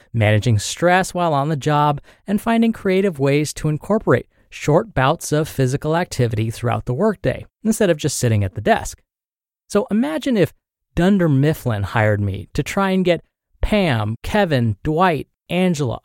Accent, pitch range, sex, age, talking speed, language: American, 120-190 Hz, male, 30-49, 155 wpm, English